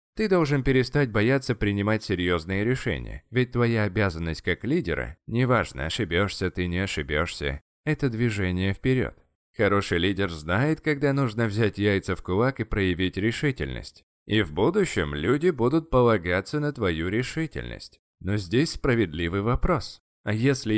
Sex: male